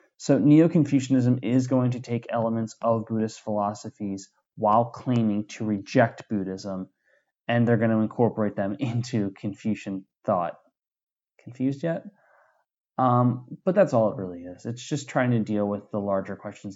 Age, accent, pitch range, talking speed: 20-39, American, 105-125 Hz, 150 wpm